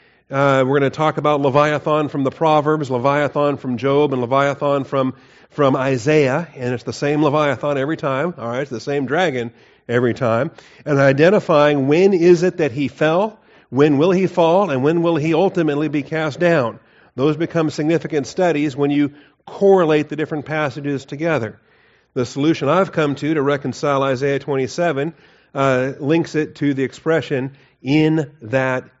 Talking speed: 170 wpm